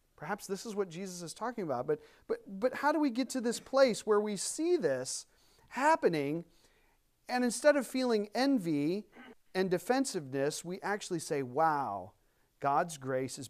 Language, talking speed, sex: English, 165 wpm, male